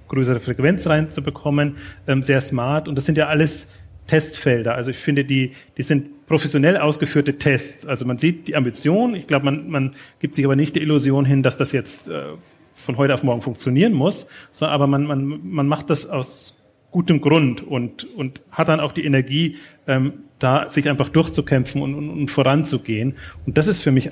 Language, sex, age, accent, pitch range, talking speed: German, male, 40-59, German, 130-150 Hz, 195 wpm